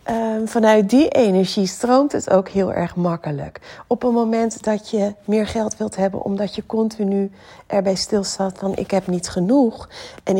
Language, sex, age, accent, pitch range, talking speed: Dutch, female, 40-59, Dutch, 185-225 Hz, 175 wpm